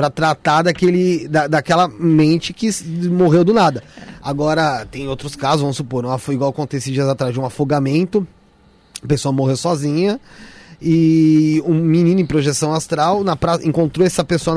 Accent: Brazilian